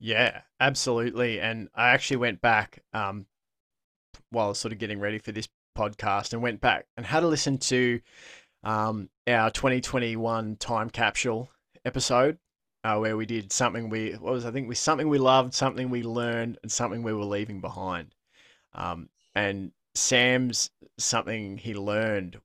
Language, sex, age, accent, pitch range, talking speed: English, male, 20-39, Australian, 105-130 Hz, 155 wpm